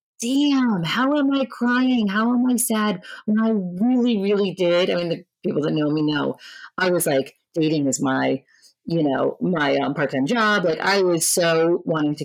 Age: 30-49